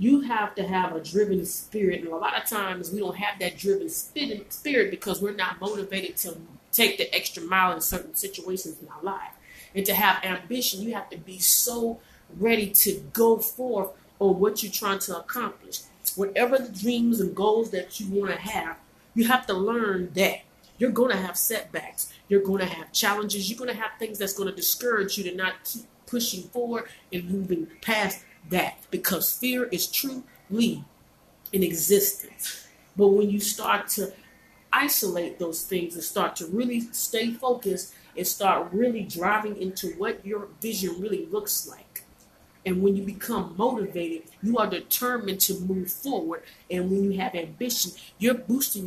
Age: 30-49